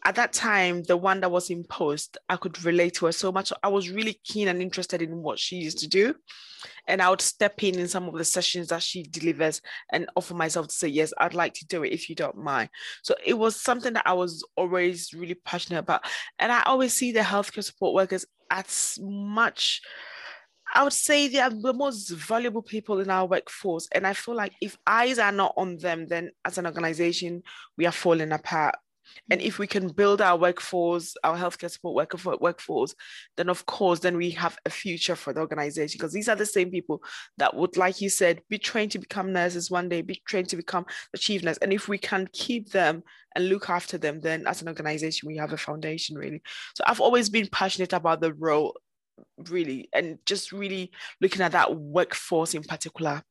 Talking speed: 215 wpm